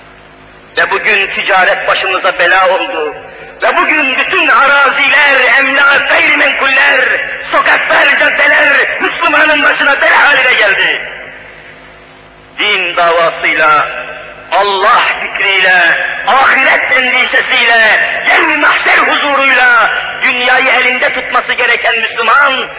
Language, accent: Turkish, native